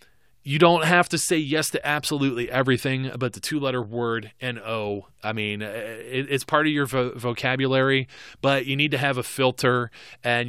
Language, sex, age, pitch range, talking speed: English, male, 20-39, 115-135 Hz, 185 wpm